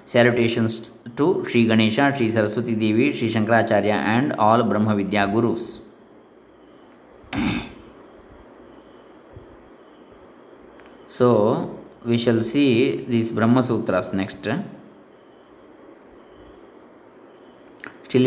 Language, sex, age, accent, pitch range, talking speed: English, male, 20-39, Indian, 115-150 Hz, 75 wpm